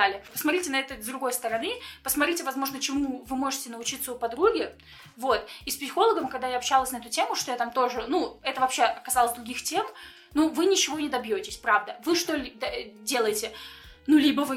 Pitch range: 250-340 Hz